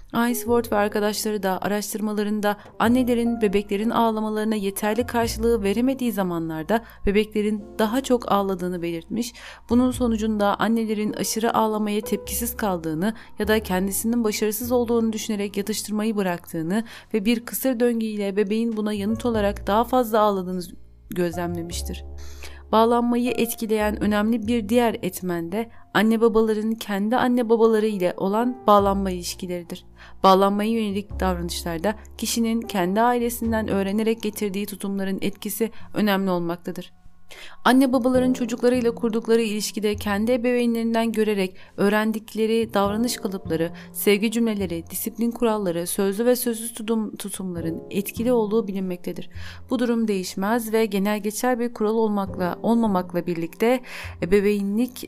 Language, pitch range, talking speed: Turkish, 195-230 Hz, 120 wpm